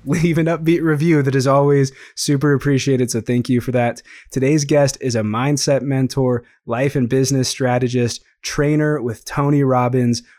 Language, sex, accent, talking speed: English, male, American, 160 wpm